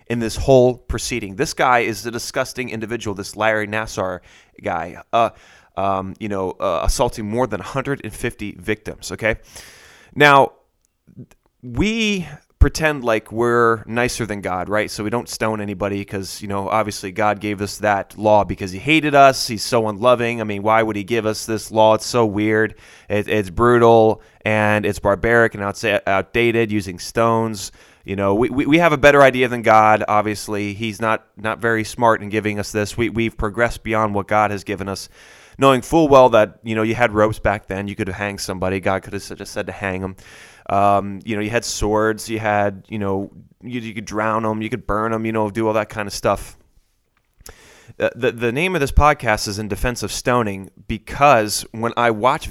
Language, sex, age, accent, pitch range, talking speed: English, male, 20-39, American, 100-115 Hz, 200 wpm